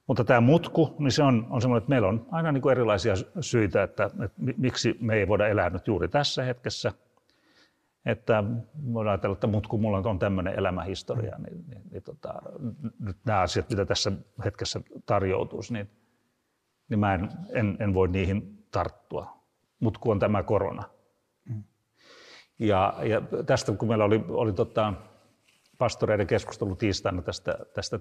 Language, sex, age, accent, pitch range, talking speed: Finnish, male, 60-79, native, 105-125 Hz, 165 wpm